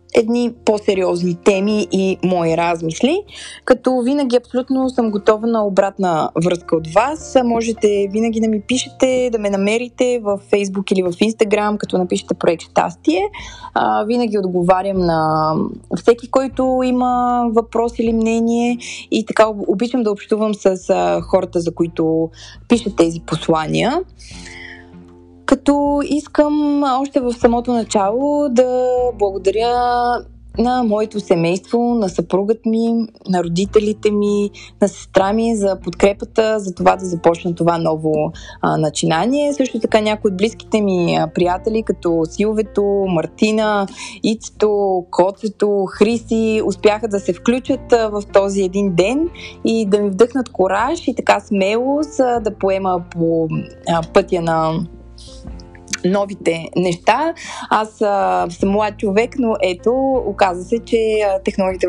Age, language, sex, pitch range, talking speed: 20-39, Bulgarian, female, 180-235 Hz, 130 wpm